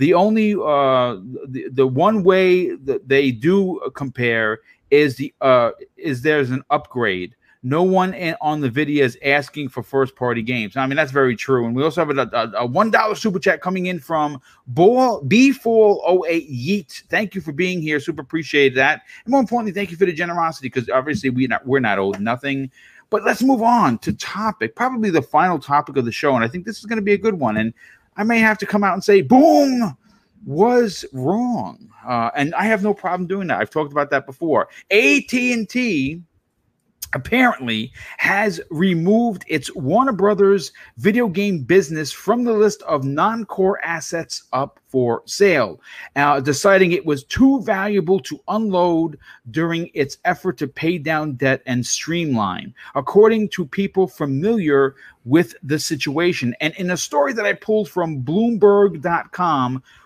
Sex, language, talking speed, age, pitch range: male, English, 175 wpm, 40-59, 140-210 Hz